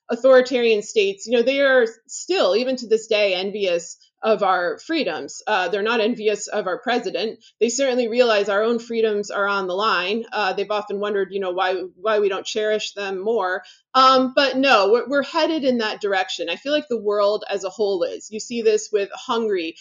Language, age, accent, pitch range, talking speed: English, 20-39, American, 195-245 Hz, 205 wpm